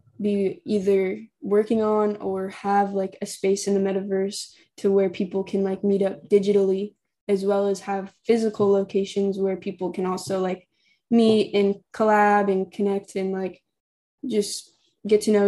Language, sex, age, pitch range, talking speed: English, female, 10-29, 200-215 Hz, 165 wpm